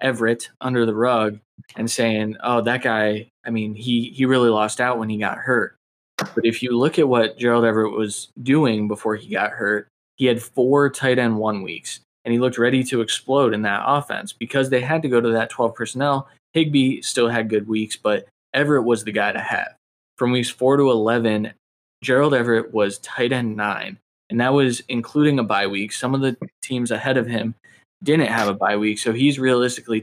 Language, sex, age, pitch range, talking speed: English, male, 20-39, 110-130 Hz, 210 wpm